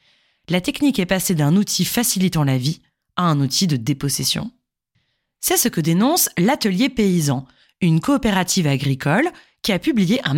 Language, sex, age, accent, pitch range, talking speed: French, female, 20-39, French, 155-230 Hz, 155 wpm